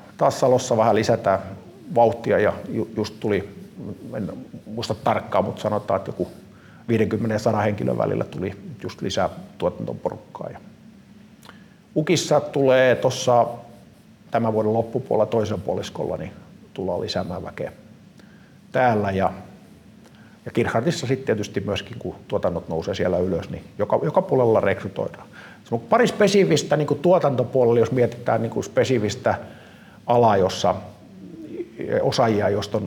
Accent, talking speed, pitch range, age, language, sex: native, 115 wpm, 105-140 Hz, 50-69, Finnish, male